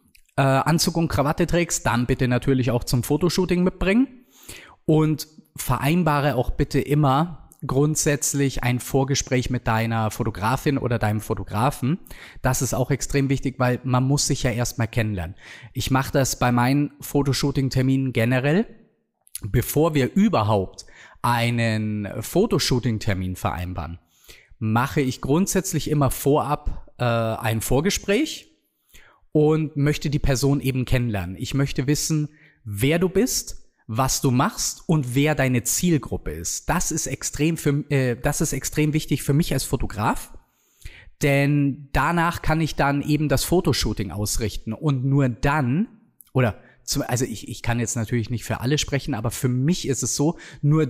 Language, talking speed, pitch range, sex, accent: German, 145 wpm, 120-150 Hz, male, German